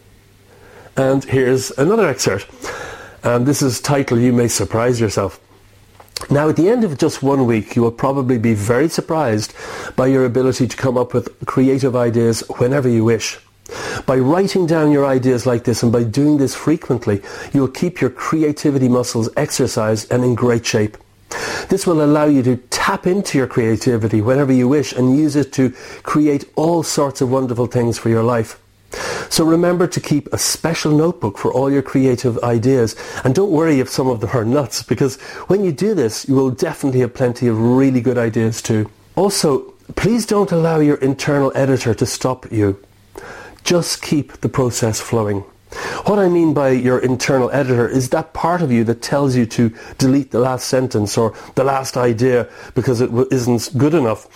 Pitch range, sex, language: 120-145 Hz, male, English